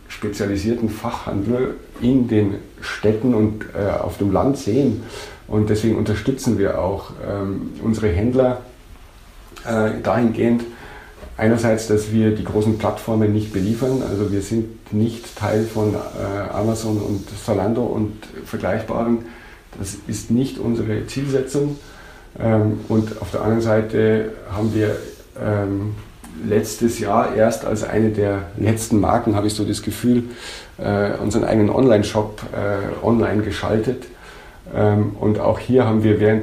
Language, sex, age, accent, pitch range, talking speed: German, male, 50-69, German, 100-110 Hz, 135 wpm